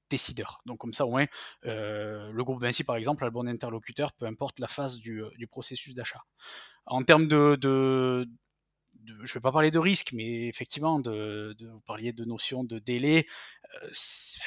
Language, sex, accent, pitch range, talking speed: French, male, French, 115-140 Hz, 185 wpm